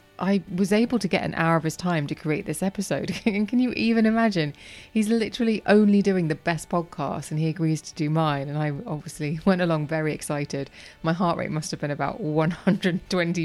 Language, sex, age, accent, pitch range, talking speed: English, female, 20-39, British, 150-190 Hz, 210 wpm